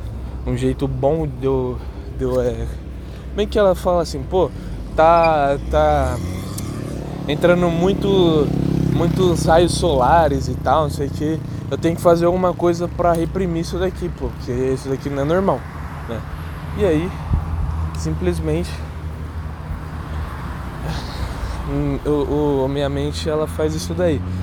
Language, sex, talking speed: Portuguese, male, 135 wpm